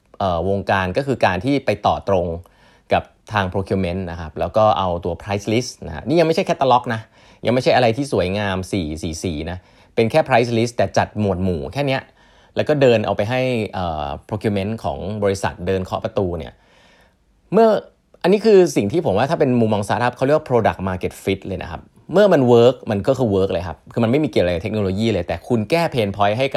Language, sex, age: Thai, male, 20-39